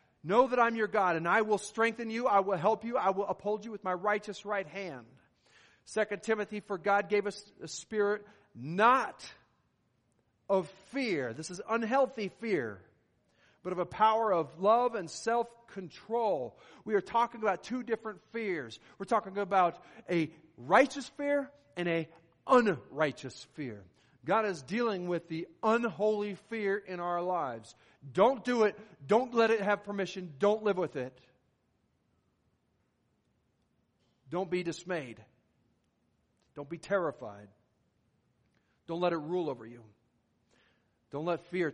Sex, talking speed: male, 145 wpm